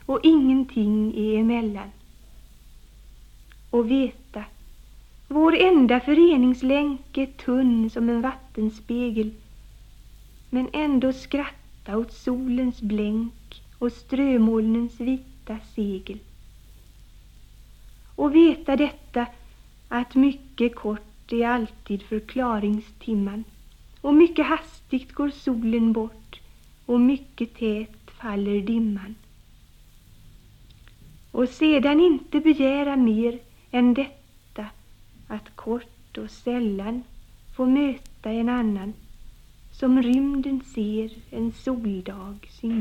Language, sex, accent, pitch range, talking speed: Swedish, female, native, 200-265 Hz, 90 wpm